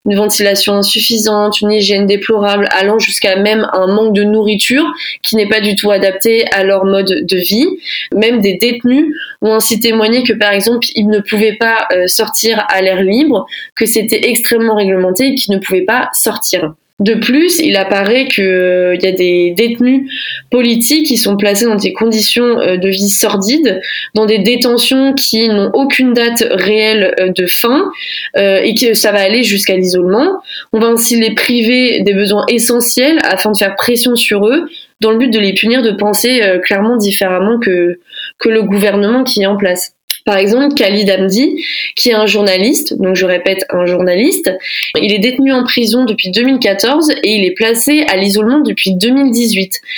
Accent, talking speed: French, 175 wpm